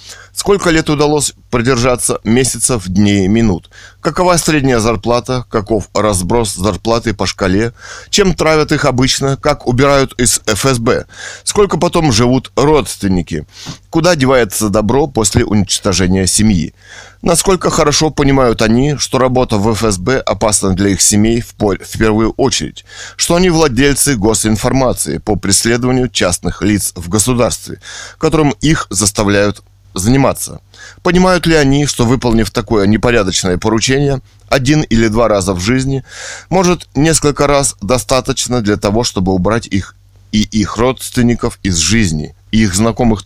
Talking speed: 130 wpm